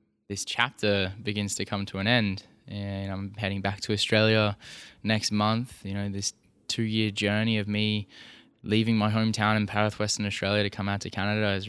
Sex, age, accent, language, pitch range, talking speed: male, 10-29, Australian, English, 100-110 Hz, 190 wpm